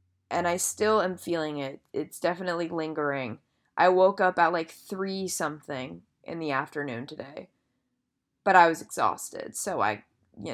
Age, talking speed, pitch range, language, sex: 20-39, 155 wpm, 155-195 Hz, English, female